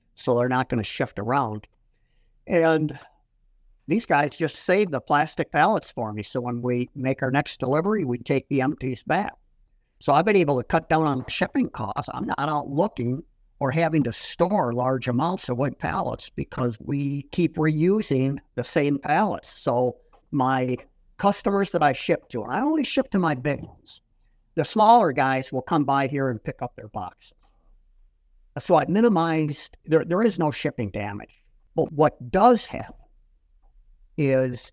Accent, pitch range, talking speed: American, 120-155 Hz, 175 wpm